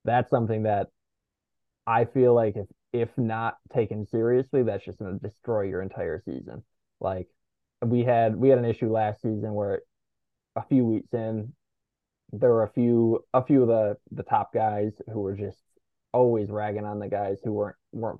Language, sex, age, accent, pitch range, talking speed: English, male, 20-39, American, 100-120 Hz, 180 wpm